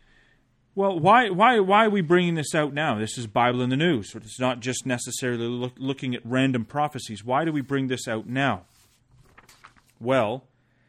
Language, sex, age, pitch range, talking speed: English, male, 30-49, 120-145 Hz, 185 wpm